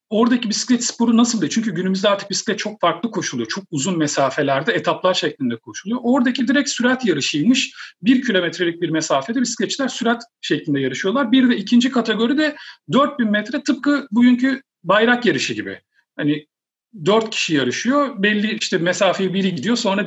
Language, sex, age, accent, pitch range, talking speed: Turkish, male, 40-59, native, 165-240 Hz, 155 wpm